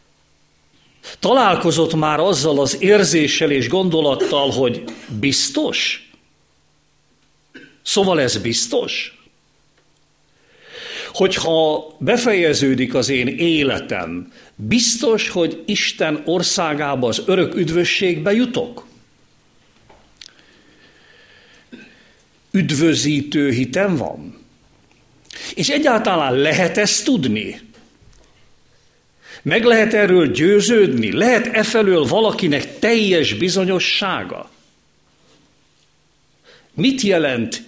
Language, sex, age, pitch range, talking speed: Hungarian, male, 50-69, 140-205 Hz, 70 wpm